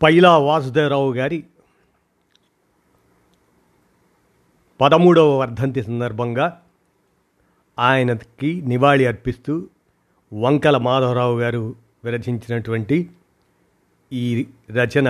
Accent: native